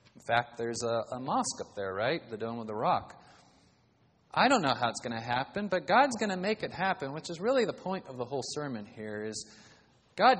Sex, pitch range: male, 120-160 Hz